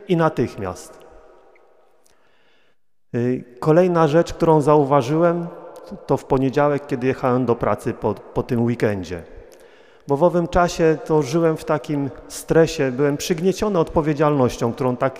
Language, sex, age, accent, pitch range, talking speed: Polish, male, 40-59, native, 120-170 Hz, 120 wpm